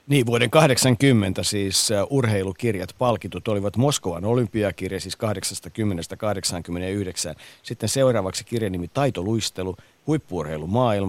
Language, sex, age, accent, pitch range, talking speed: Finnish, male, 50-69, native, 90-115 Hz, 90 wpm